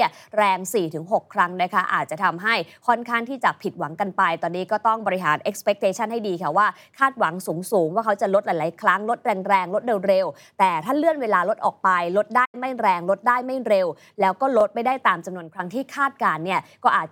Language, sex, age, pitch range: Thai, female, 20-39, 175-230 Hz